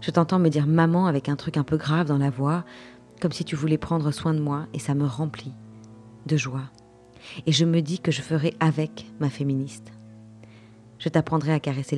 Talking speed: 210 wpm